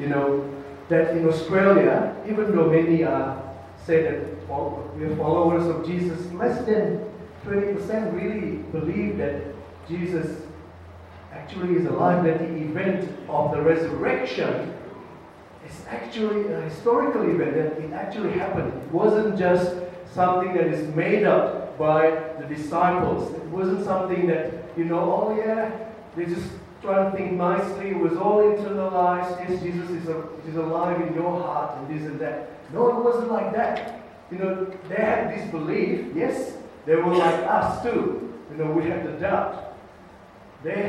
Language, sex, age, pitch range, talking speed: English, male, 40-59, 155-190 Hz, 155 wpm